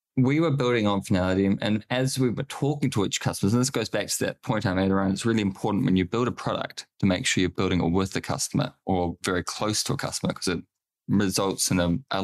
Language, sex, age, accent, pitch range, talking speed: English, male, 20-39, Australian, 95-120 Hz, 255 wpm